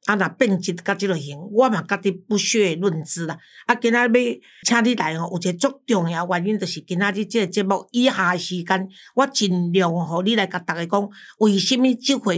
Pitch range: 185-235 Hz